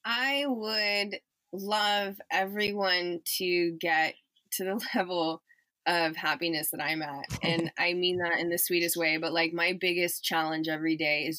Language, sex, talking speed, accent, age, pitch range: English, female, 160 wpm, American, 20-39, 165-185 Hz